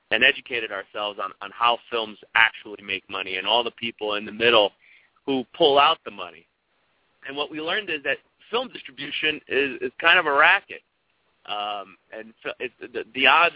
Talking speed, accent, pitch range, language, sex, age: 190 wpm, American, 105-145 Hz, English, male, 30-49